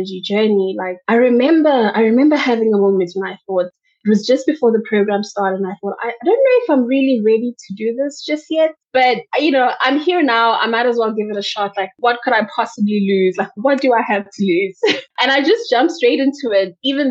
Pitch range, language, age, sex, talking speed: 190-240 Hz, English, 20-39, female, 240 wpm